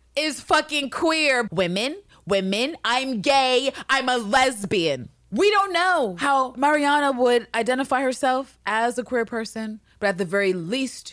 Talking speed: 145 wpm